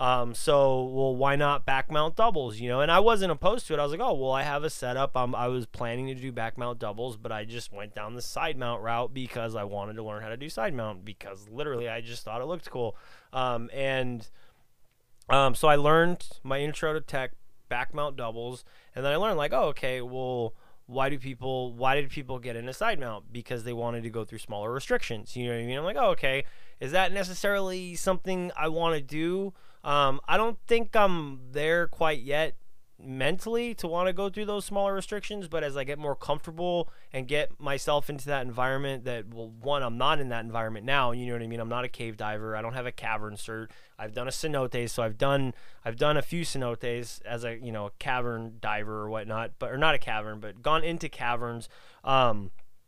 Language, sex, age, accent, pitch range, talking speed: English, male, 20-39, American, 115-150 Hz, 230 wpm